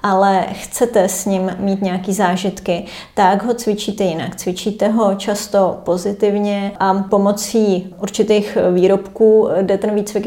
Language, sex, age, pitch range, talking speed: Czech, female, 30-49, 190-205 Hz, 130 wpm